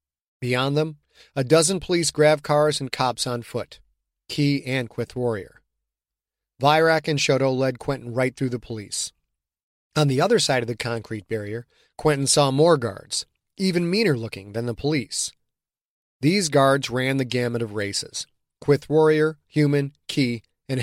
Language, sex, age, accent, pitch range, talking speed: English, male, 30-49, American, 120-155 Hz, 155 wpm